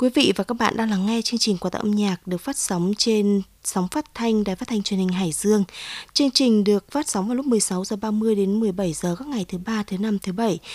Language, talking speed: Vietnamese, 275 wpm